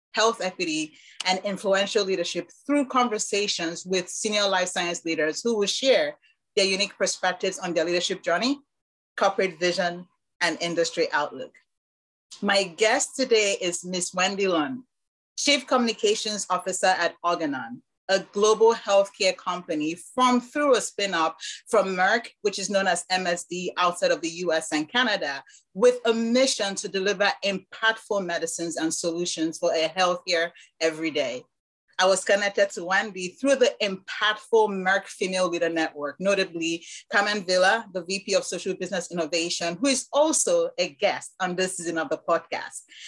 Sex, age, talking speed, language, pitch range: female, 30-49, 150 wpm, English, 175-215 Hz